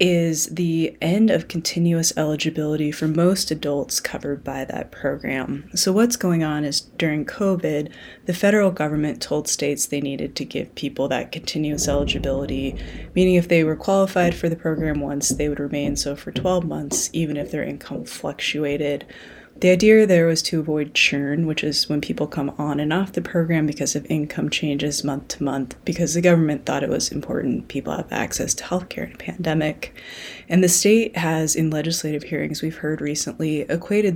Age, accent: 20-39, American